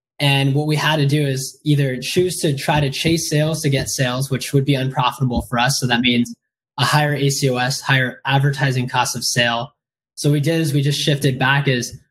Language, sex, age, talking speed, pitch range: English, male, 20-39, 220 wpm, 125-150 Hz